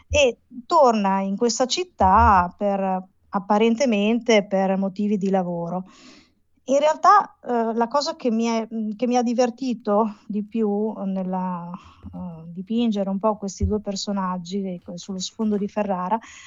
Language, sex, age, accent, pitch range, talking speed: Italian, female, 30-49, native, 195-235 Hz, 120 wpm